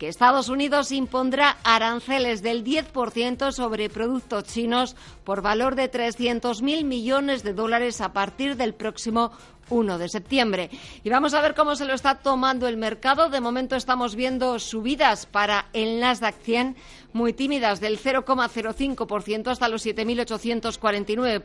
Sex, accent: female, Spanish